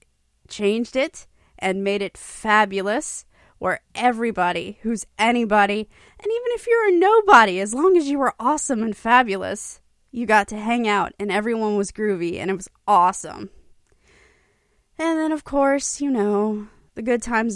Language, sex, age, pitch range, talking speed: English, female, 20-39, 190-245 Hz, 155 wpm